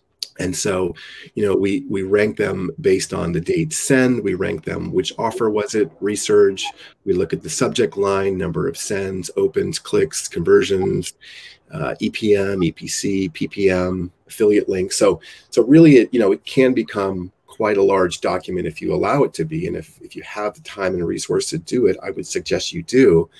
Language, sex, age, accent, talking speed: English, male, 30-49, American, 195 wpm